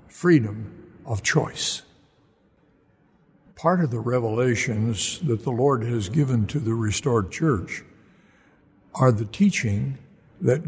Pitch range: 110-155 Hz